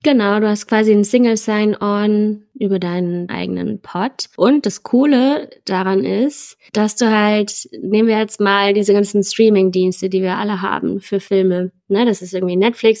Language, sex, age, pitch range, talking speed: German, female, 20-39, 190-225 Hz, 170 wpm